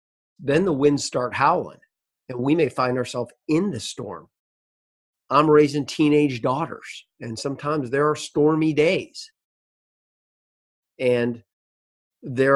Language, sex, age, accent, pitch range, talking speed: English, male, 40-59, American, 120-150 Hz, 120 wpm